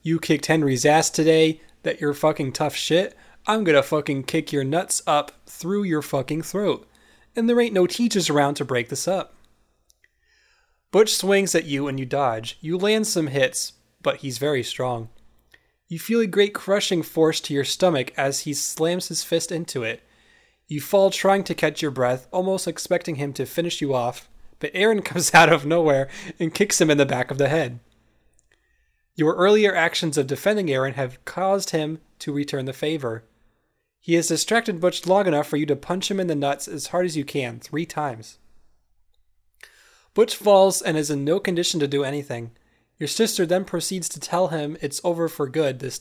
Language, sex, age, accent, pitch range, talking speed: English, male, 20-39, American, 140-180 Hz, 190 wpm